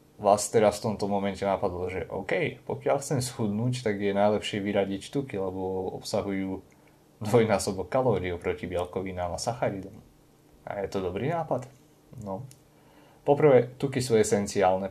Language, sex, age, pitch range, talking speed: Slovak, male, 20-39, 95-110 Hz, 135 wpm